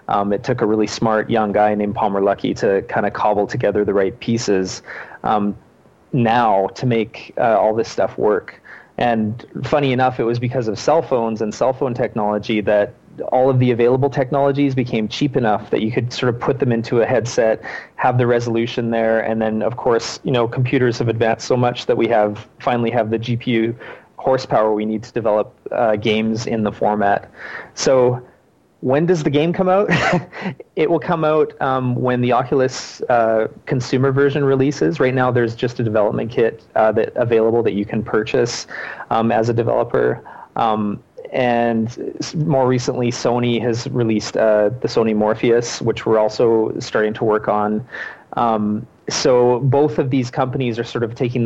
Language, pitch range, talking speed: English, 110-130 Hz, 185 wpm